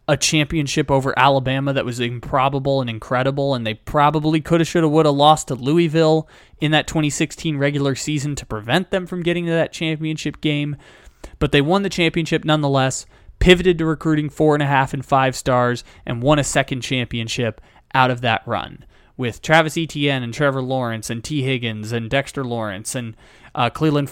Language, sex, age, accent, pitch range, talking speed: English, male, 20-39, American, 130-160 Hz, 185 wpm